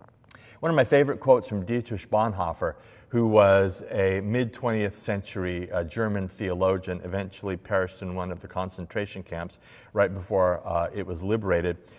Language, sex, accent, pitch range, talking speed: English, male, American, 100-140 Hz, 145 wpm